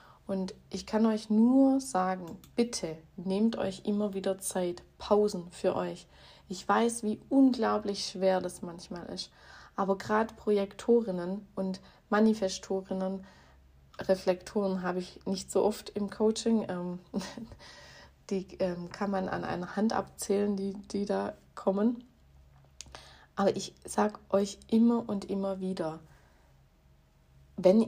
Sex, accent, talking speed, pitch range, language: female, German, 120 wpm, 175-205 Hz, German